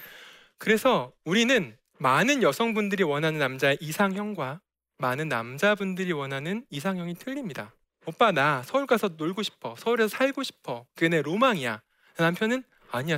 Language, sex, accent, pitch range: Korean, male, native, 145-215 Hz